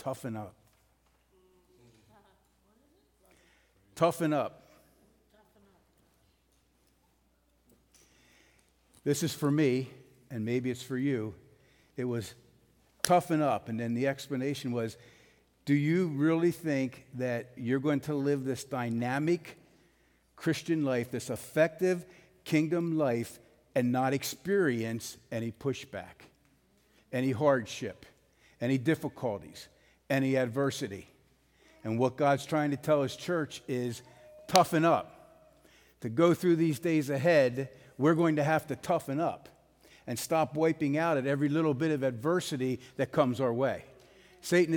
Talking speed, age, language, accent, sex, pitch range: 120 wpm, 50-69, English, American, male, 125-165 Hz